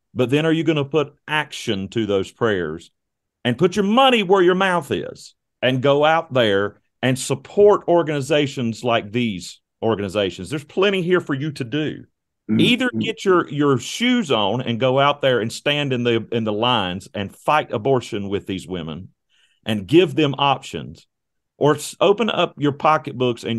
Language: English